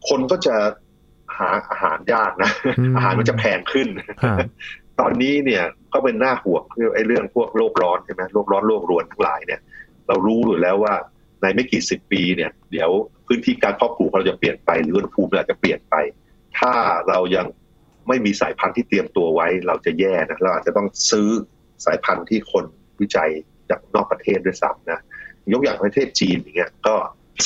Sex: male